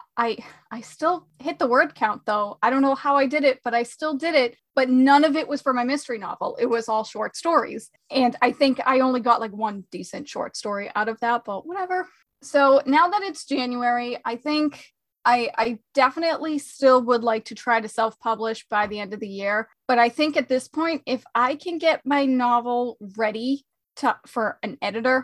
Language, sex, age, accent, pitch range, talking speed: English, female, 30-49, American, 225-275 Hz, 210 wpm